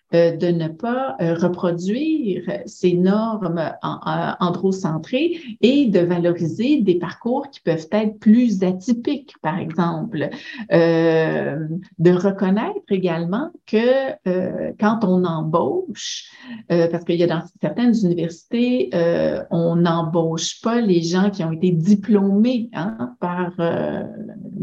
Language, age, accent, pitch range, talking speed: French, 50-69, Canadian, 170-225 Hz, 125 wpm